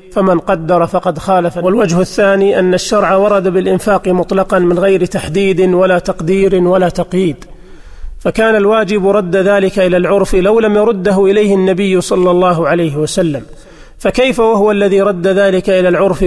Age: 40-59